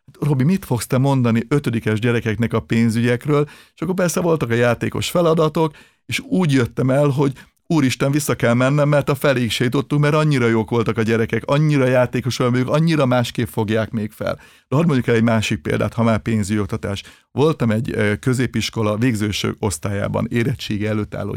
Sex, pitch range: male, 115-145 Hz